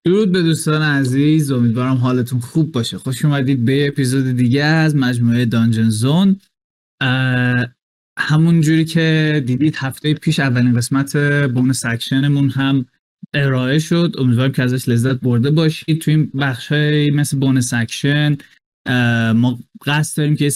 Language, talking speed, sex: Persian, 135 wpm, male